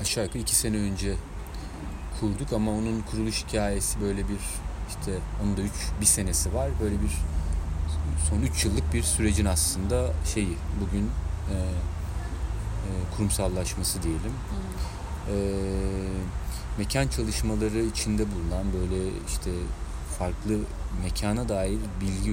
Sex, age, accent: male, 40-59, native